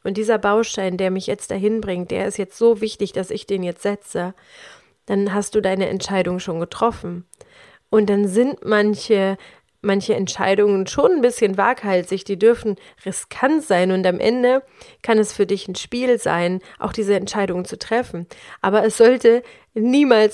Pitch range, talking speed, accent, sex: 190-225 Hz, 170 wpm, German, female